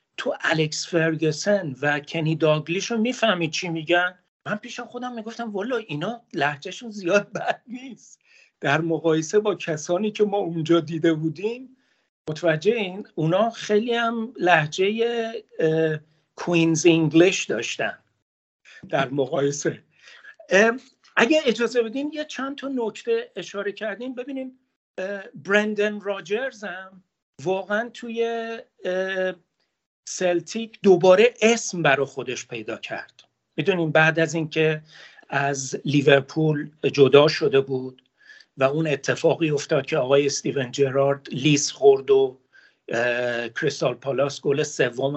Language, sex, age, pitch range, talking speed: Persian, male, 50-69, 150-220 Hz, 115 wpm